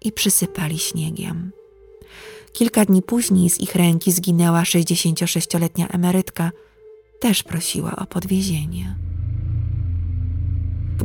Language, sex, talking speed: Polish, female, 90 wpm